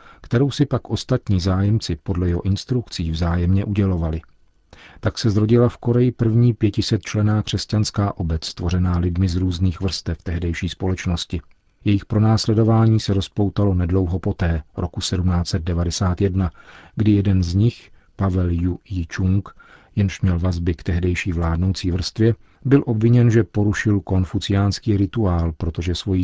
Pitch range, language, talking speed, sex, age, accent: 90-105 Hz, Czech, 130 wpm, male, 40-59, native